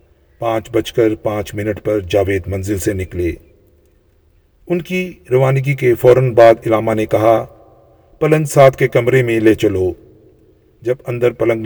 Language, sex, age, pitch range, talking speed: Urdu, male, 50-69, 100-130 Hz, 150 wpm